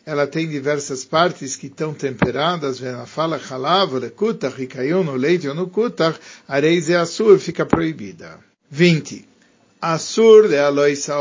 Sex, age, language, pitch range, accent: male, 50-69, Japanese, 135-175 Hz, Brazilian